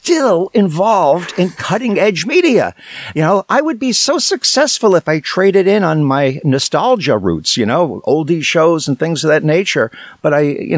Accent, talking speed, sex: American, 180 wpm, male